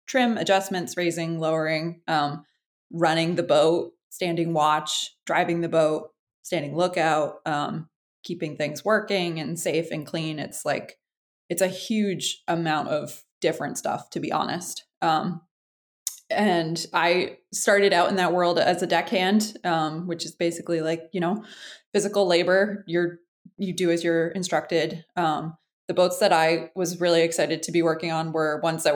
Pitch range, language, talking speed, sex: 155-175 Hz, English, 160 wpm, female